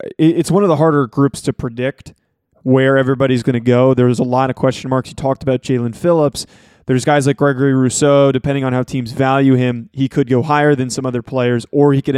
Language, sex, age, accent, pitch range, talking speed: English, male, 20-39, American, 130-145 Hz, 225 wpm